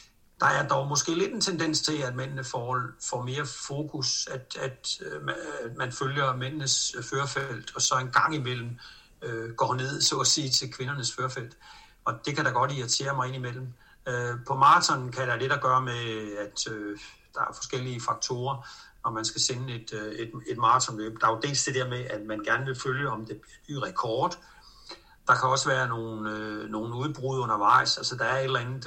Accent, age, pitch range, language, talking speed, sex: native, 60-79, 115-135 Hz, Danish, 205 wpm, male